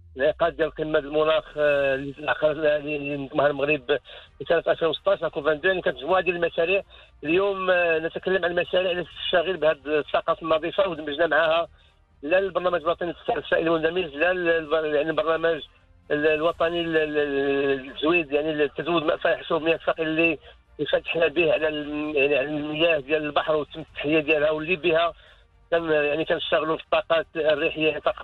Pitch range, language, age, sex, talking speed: 150-170 Hz, English, 50-69, male, 125 wpm